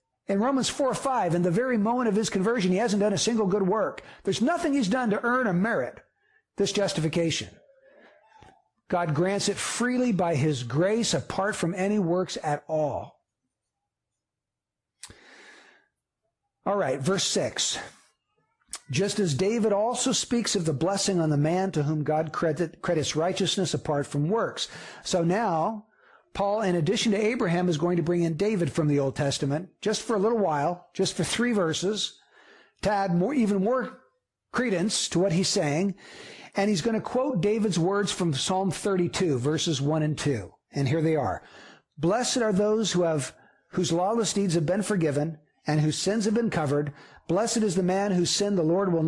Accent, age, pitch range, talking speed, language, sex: American, 60-79, 160-215 Hz, 175 wpm, English, male